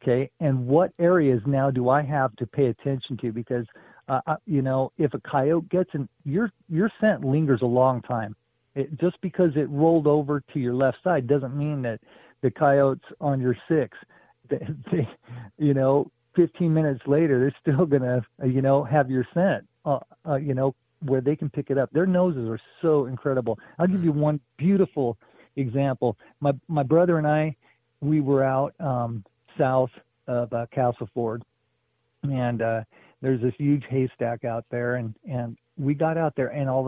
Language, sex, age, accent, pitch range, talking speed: English, male, 50-69, American, 120-145 Hz, 175 wpm